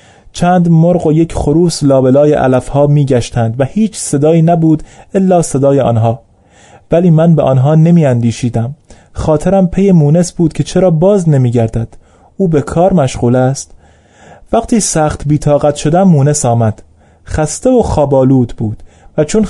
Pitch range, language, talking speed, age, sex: 120-165 Hz, Persian, 140 wpm, 30-49, male